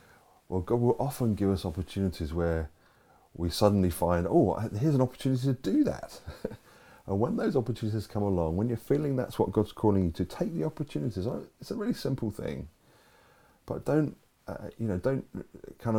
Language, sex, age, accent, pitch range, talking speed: English, male, 30-49, British, 85-120 Hz, 180 wpm